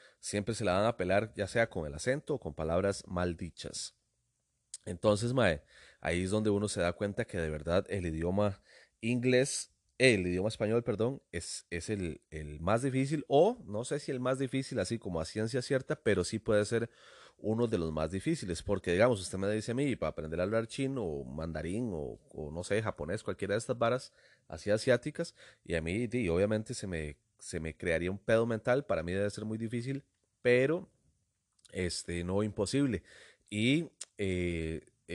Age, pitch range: 30-49, 90-115 Hz